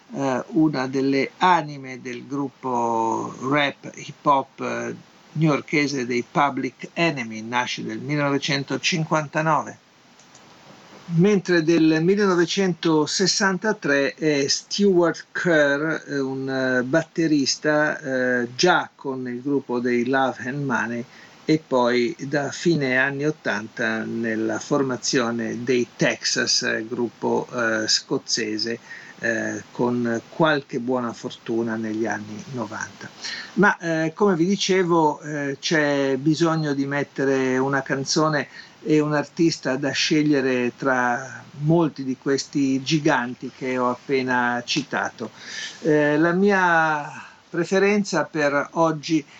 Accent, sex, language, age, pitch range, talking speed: native, male, Italian, 50-69, 130-160 Hz, 110 wpm